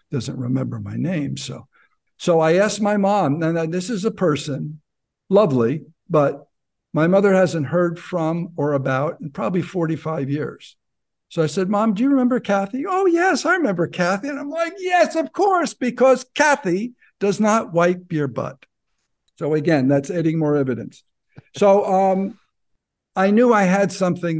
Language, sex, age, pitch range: English, male, 60-79, 135-185 Hz